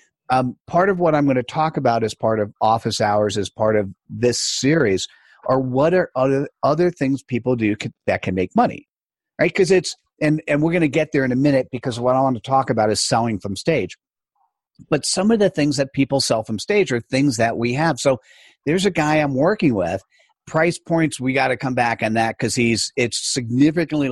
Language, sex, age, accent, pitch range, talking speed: English, male, 50-69, American, 115-145 Hz, 225 wpm